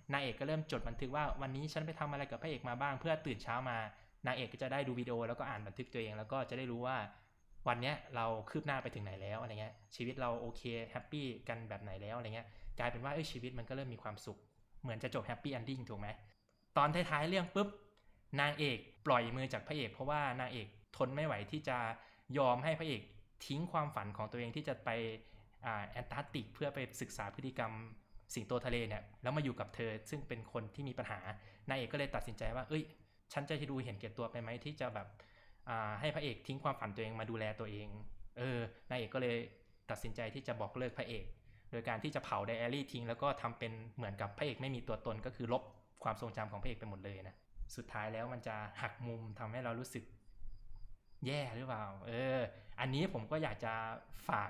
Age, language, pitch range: 20-39, Thai, 110-130 Hz